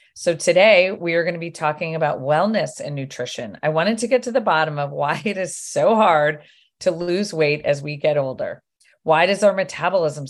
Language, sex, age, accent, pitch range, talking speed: English, female, 40-59, American, 145-180 Hz, 210 wpm